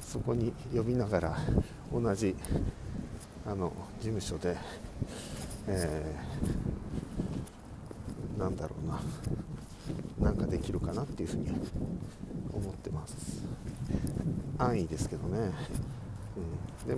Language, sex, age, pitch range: Japanese, male, 50-69, 95-130 Hz